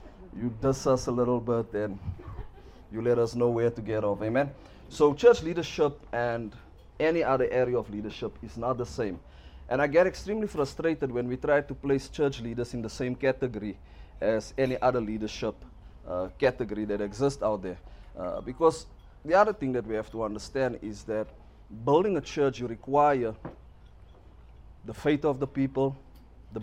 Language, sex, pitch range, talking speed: English, male, 110-140 Hz, 175 wpm